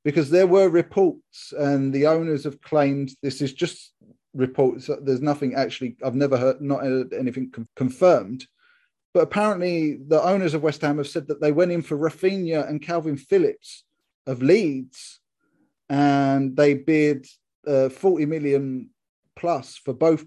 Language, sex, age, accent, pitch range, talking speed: English, male, 30-49, British, 135-165 Hz, 150 wpm